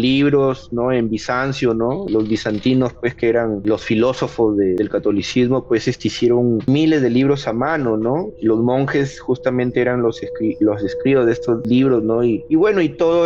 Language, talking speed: Spanish, 180 wpm